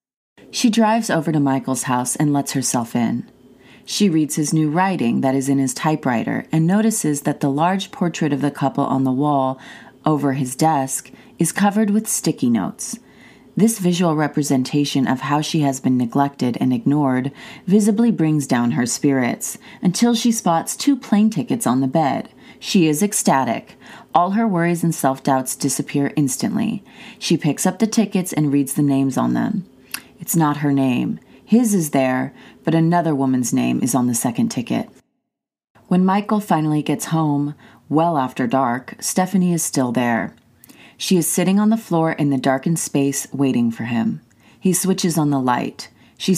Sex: female